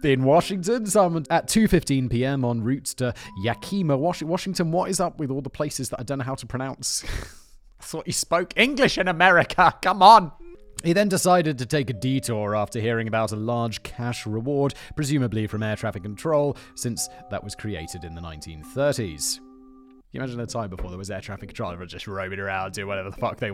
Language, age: English, 30-49